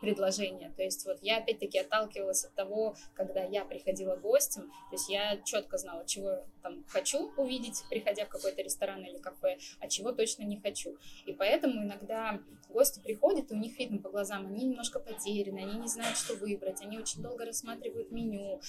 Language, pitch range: Russian, 195-250 Hz